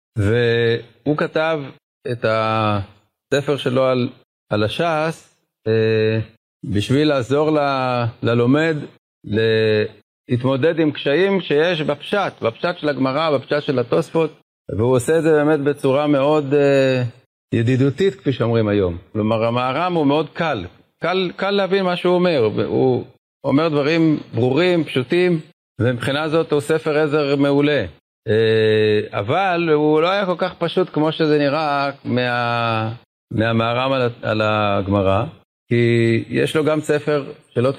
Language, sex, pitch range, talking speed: Hebrew, male, 115-155 Hz, 125 wpm